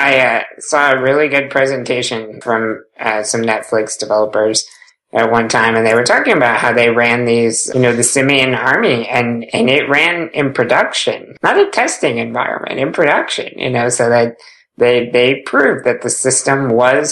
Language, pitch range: English, 120-135 Hz